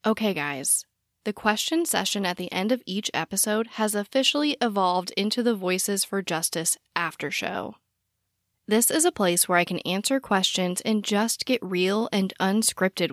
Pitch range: 180-240 Hz